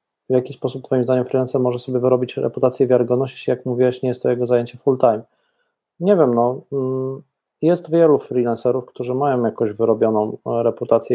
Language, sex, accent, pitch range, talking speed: Polish, male, native, 115-130 Hz, 180 wpm